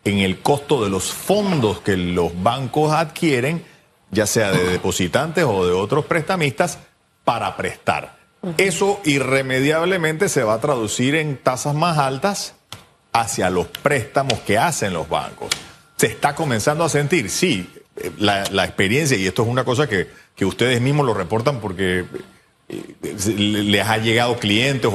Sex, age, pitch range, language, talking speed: male, 40-59, 105-145 Hz, Spanish, 150 wpm